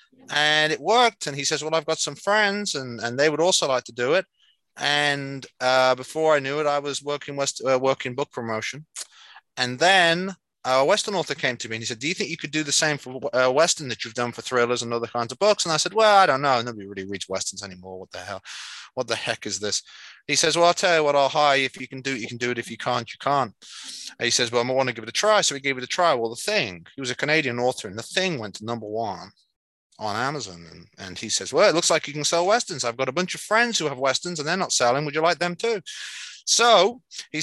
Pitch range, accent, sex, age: 120-160 Hz, British, male, 30-49